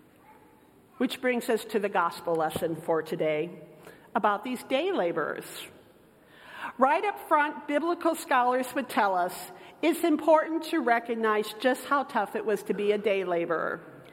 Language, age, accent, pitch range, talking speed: English, 50-69, American, 220-300 Hz, 150 wpm